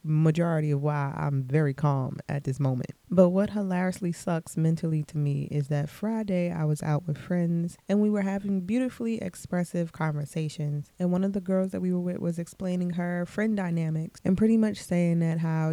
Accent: American